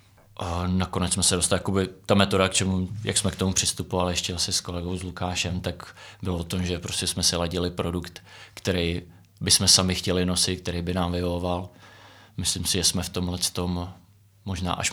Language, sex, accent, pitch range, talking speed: Czech, male, native, 90-100 Hz, 200 wpm